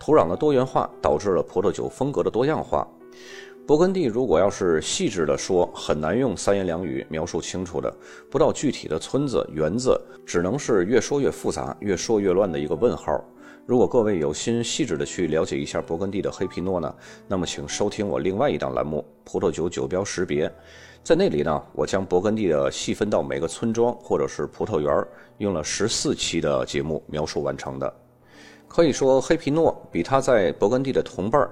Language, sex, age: Chinese, male, 30-49